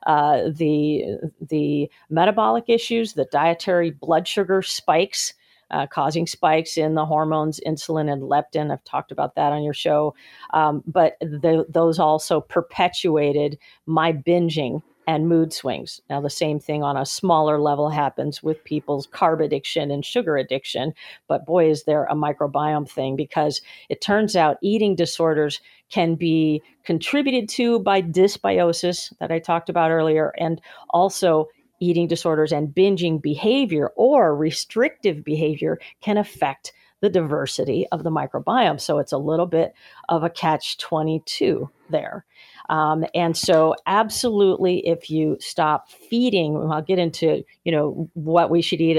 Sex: female